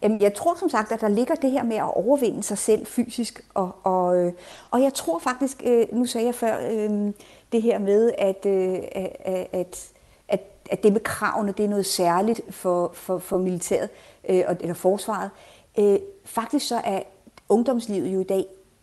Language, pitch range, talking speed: Danish, 180-230 Hz, 155 wpm